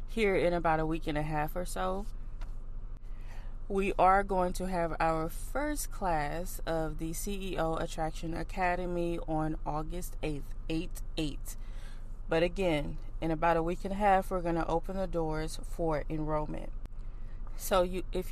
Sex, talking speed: female, 155 wpm